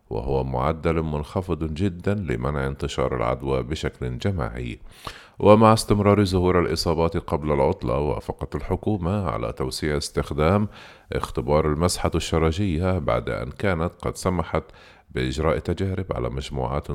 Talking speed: 115 wpm